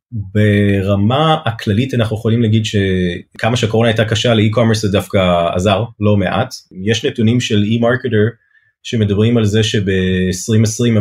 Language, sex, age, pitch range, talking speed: Hebrew, male, 30-49, 100-115 Hz, 135 wpm